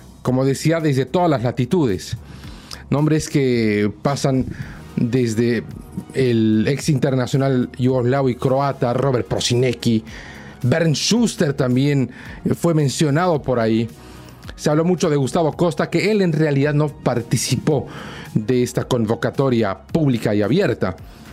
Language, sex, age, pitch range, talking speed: Spanish, male, 40-59, 115-155 Hz, 120 wpm